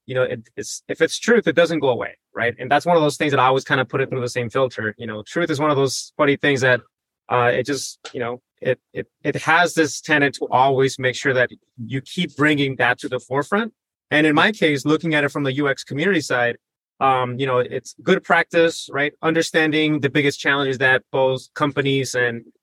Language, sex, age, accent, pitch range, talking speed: English, male, 30-49, American, 125-155 Hz, 235 wpm